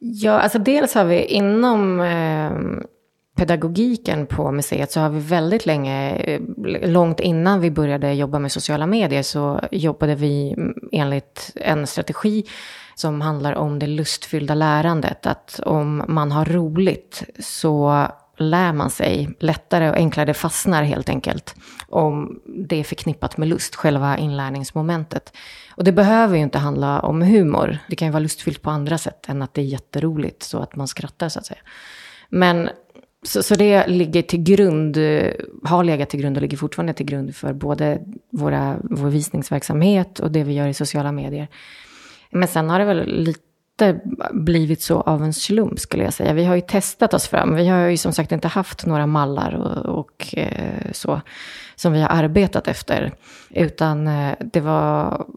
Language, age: Swedish, 30-49